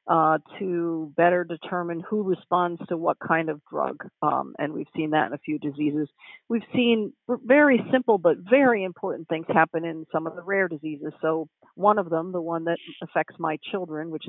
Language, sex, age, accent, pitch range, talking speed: English, female, 50-69, American, 155-195 Hz, 195 wpm